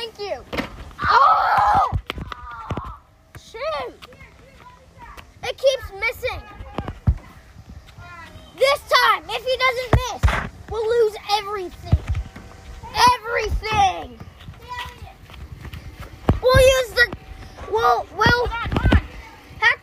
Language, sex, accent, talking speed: English, female, American, 70 wpm